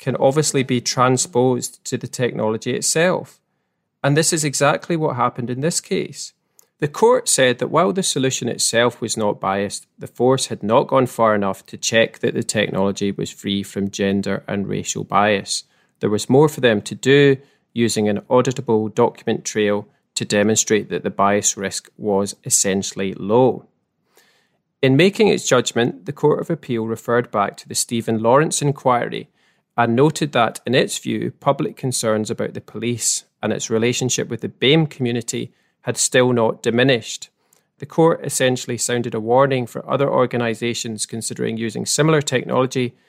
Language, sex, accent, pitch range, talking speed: English, male, British, 110-140 Hz, 165 wpm